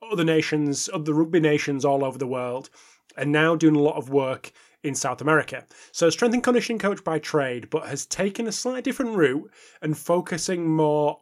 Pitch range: 140-180 Hz